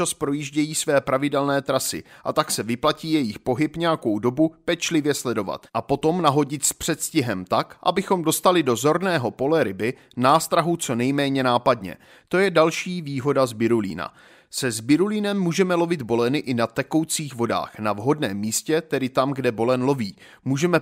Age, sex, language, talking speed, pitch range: 30-49, male, Czech, 155 wpm, 125-170 Hz